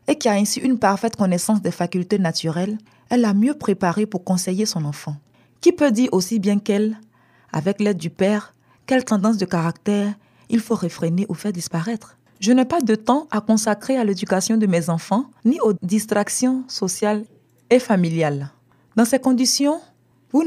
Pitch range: 175-225 Hz